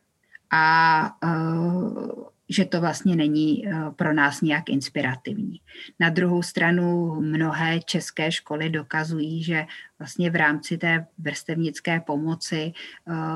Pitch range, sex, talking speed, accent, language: 160-175 Hz, female, 110 wpm, native, Czech